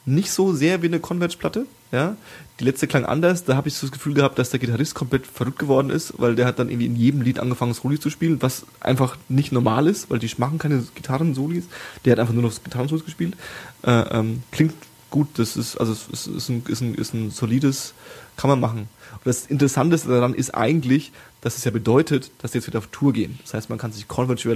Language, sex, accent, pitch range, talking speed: German, male, German, 115-145 Hz, 235 wpm